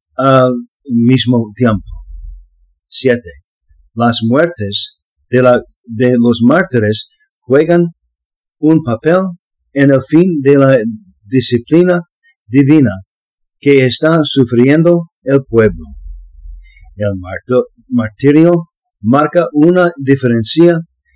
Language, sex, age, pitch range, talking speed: English, male, 50-69, 115-165 Hz, 75 wpm